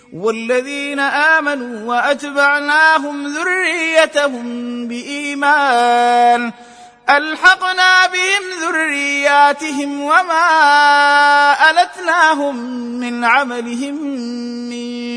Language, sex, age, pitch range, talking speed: Arabic, male, 30-49, 240-295 Hz, 50 wpm